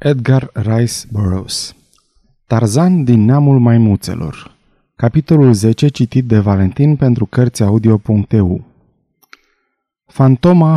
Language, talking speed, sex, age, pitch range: Romanian, 90 wpm, male, 30-49, 115-160 Hz